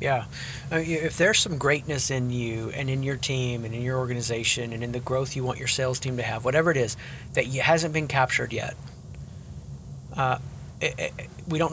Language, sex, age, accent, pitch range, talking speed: English, male, 30-49, American, 125-150 Hz, 190 wpm